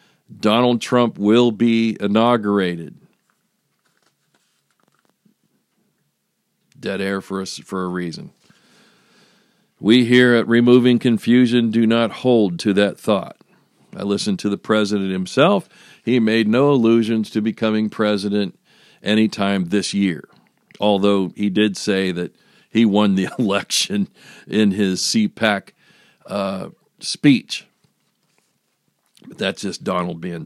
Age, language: 50-69, English